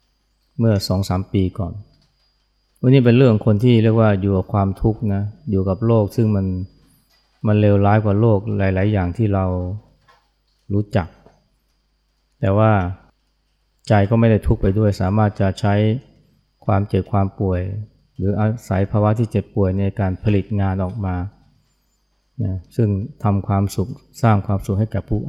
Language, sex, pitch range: Thai, male, 95-110 Hz